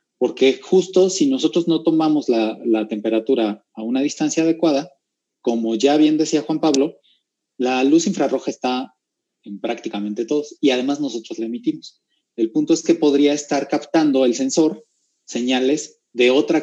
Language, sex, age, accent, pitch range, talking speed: Spanish, male, 30-49, Mexican, 115-155 Hz, 155 wpm